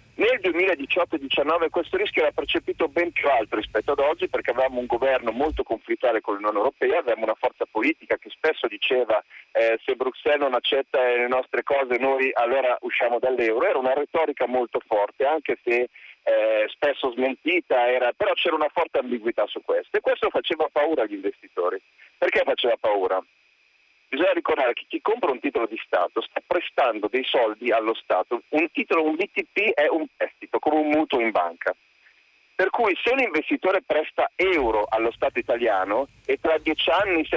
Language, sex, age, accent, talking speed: Italian, male, 40-59, native, 175 wpm